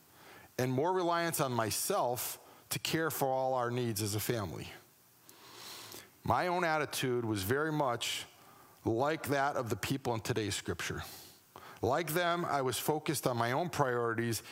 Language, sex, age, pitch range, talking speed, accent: English, male, 40-59, 115-150 Hz, 155 wpm, American